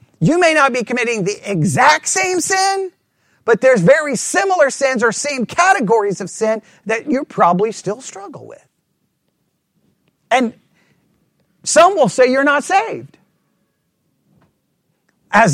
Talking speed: 125 wpm